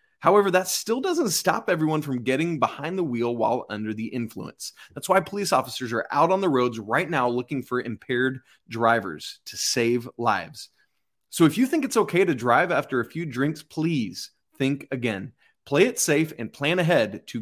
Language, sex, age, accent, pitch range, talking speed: English, male, 20-39, American, 125-185 Hz, 190 wpm